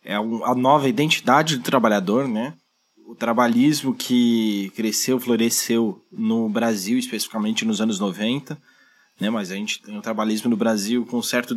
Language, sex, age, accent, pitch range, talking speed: Portuguese, male, 20-39, Brazilian, 115-165 Hz, 150 wpm